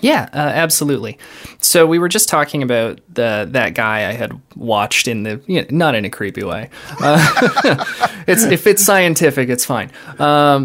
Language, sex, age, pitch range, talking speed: English, male, 20-39, 115-150 Hz, 180 wpm